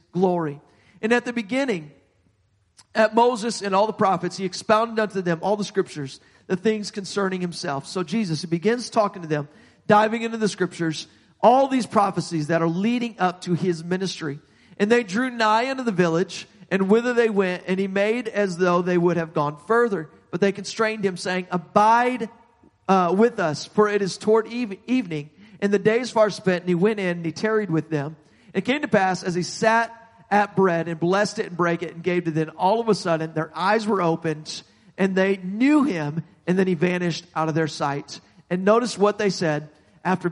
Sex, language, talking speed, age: male, English, 205 wpm, 40-59